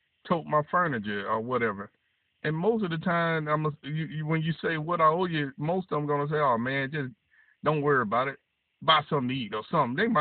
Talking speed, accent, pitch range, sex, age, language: 240 wpm, American, 125-170 Hz, male, 50-69, English